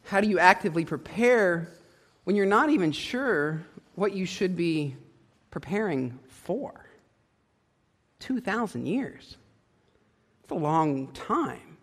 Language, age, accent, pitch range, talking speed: English, 40-59, American, 135-195 Hz, 110 wpm